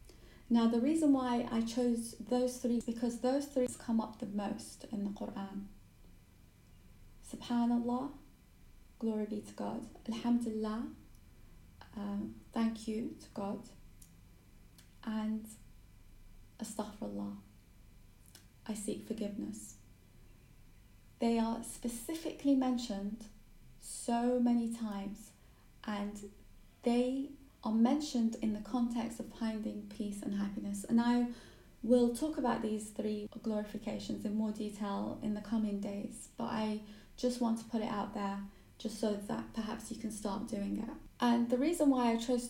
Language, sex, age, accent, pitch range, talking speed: English, female, 20-39, British, 200-240 Hz, 130 wpm